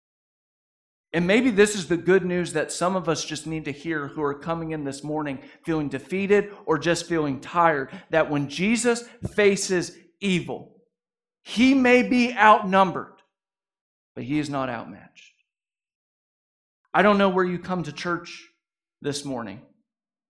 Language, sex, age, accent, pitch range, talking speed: English, male, 50-69, American, 160-210 Hz, 150 wpm